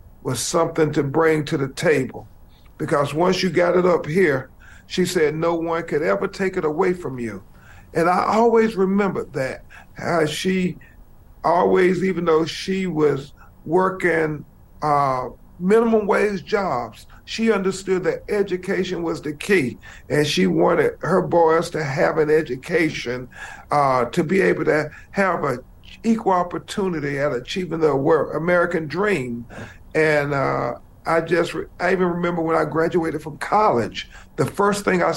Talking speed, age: 150 wpm, 50-69